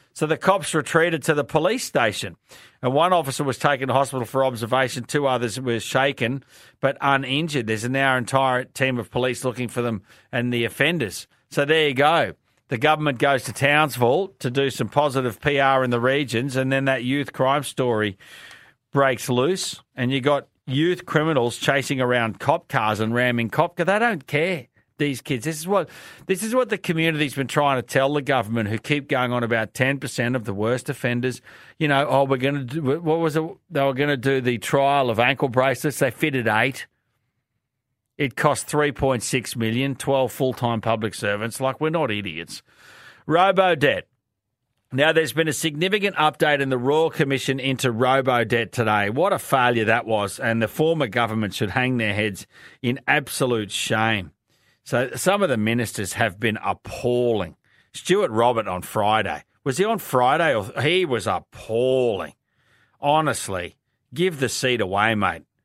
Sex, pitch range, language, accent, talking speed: male, 120-145 Hz, English, Australian, 185 wpm